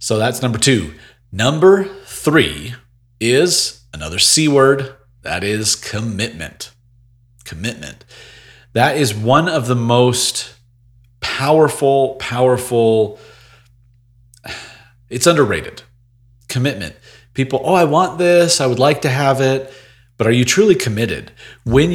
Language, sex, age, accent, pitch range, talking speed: English, male, 40-59, American, 110-130 Hz, 115 wpm